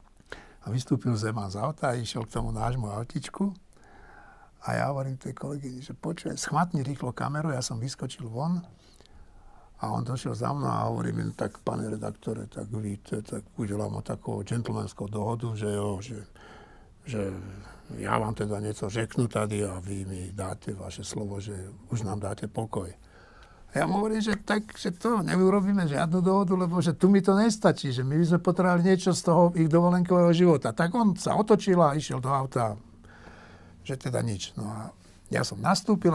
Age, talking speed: 60-79, 180 wpm